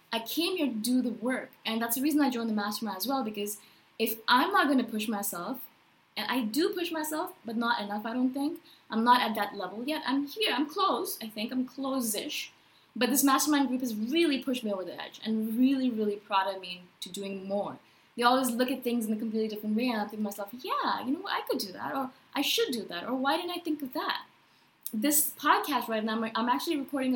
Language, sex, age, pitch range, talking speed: English, female, 20-39, 220-285 Hz, 245 wpm